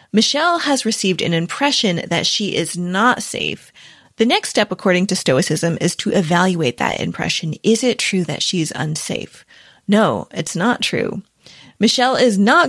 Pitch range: 170-225 Hz